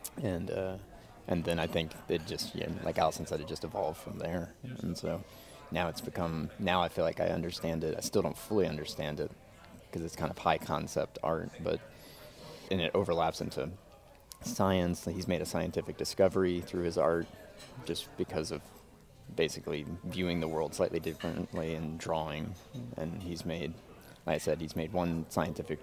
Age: 30-49